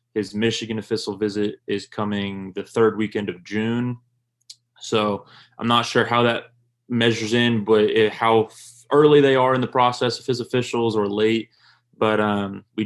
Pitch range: 105-120 Hz